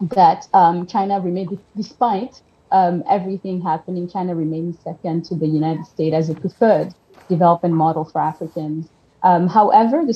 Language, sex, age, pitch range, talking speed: English, female, 30-49, 160-195 Hz, 150 wpm